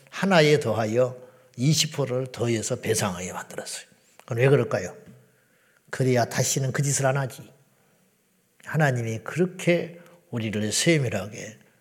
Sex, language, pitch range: male, Korean, 125-160 Hz